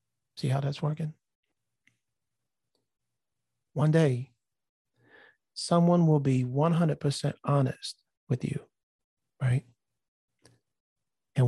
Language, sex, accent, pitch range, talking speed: English, male, American, 125-150 Hz, 85 wpm